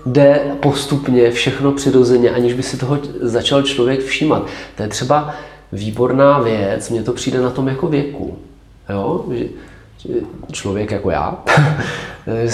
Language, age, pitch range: Czech, 40-59, 95-140 Hz